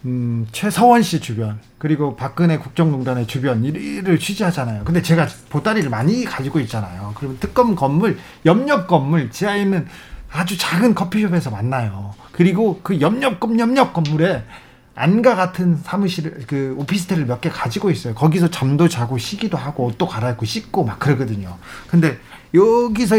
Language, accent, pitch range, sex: Korean, native, 130-195 Hz, male